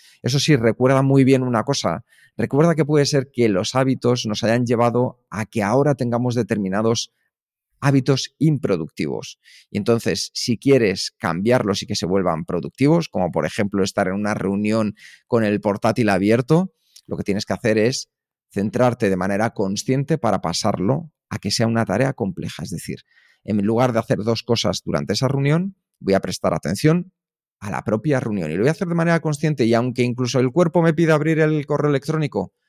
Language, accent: Spanish, Spanish